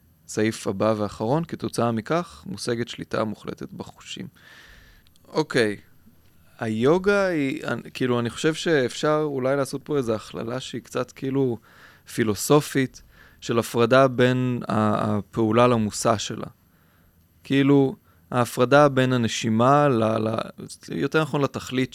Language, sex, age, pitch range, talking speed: Hebrew, male, 20-39, 105-135 Hz, 115 wpm